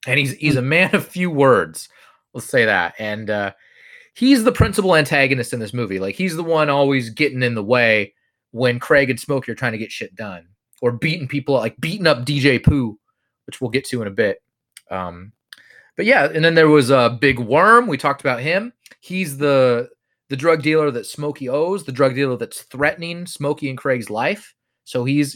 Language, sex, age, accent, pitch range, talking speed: English, male, 30-49, American, 130-175 Hz, 210 wpm